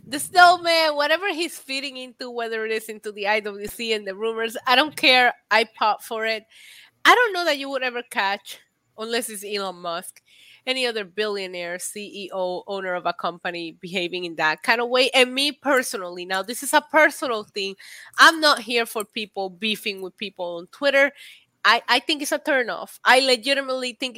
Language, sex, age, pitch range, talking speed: English, female, 20-39, 215-285 Hz, 190 wpm